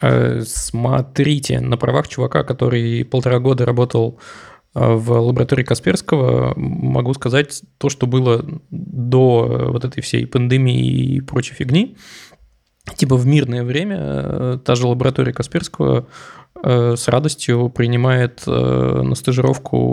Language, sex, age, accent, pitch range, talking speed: Russian, male, 20-39, native, 120-130 Hz, 110 wpm